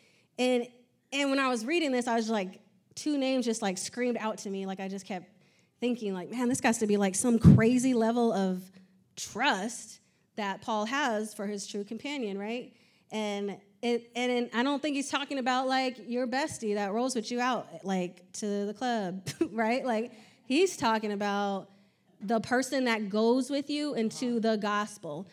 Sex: female